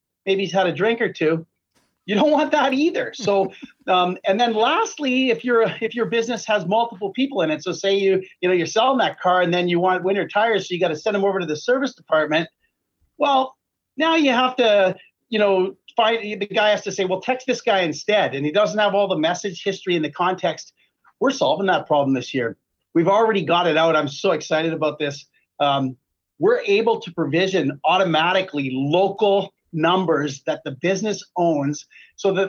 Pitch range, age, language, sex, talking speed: 175-240 Hz, 40-59, English, male, 205 wpm